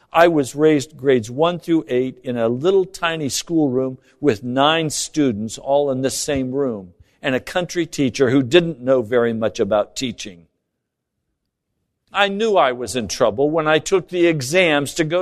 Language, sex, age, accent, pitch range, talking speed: English, male, 60-79, American, 105-155 Hz, 175 wpm